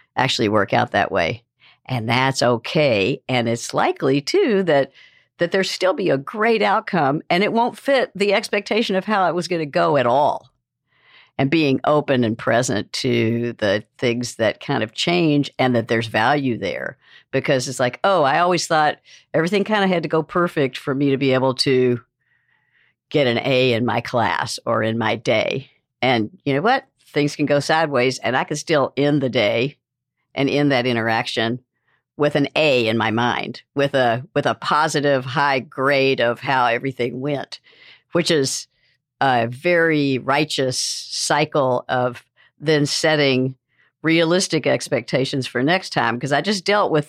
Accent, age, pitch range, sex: American, 60-79, 120-155 Hz, female